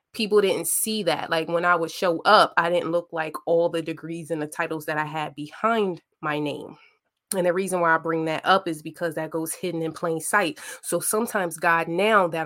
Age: 20-39